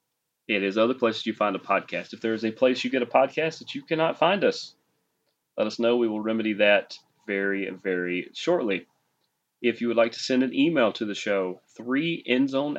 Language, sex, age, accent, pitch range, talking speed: English, male, 30-49, American, 110-130 Hz, 205 wpm